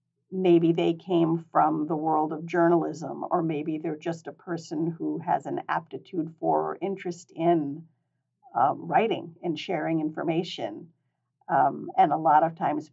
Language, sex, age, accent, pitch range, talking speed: English, female, 50-69, American, 150-180 Hz, 155 wpm